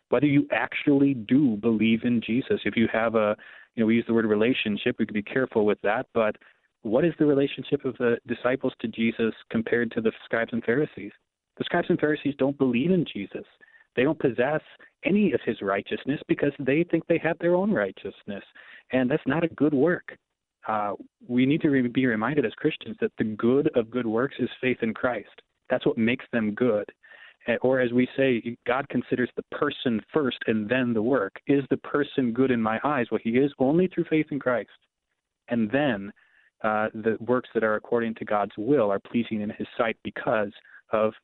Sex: male